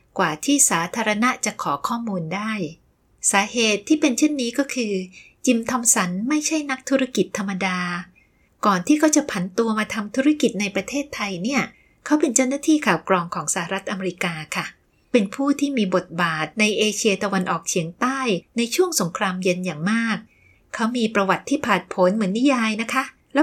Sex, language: female, Thai